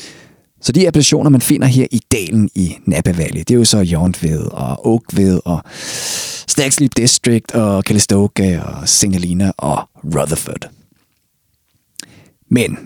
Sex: male